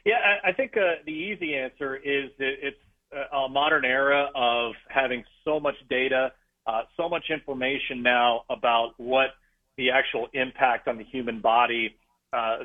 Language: English